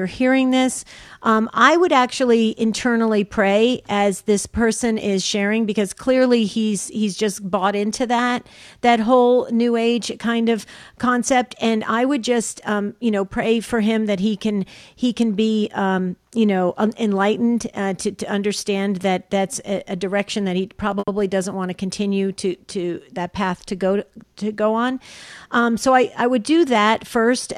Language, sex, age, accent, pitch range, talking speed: English, female, 50-69, American, 205-240 Hz, 180 wpm